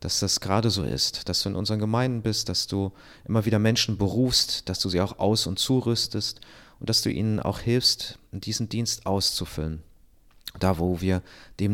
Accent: German